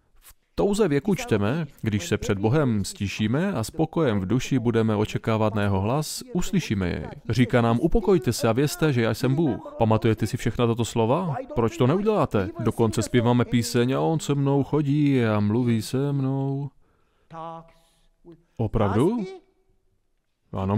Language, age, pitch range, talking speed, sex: Slovak, 30-49, 110-150 Hz, 145 wpm, male